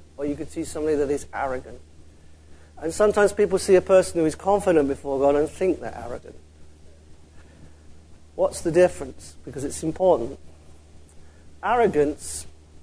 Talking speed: 140 wpm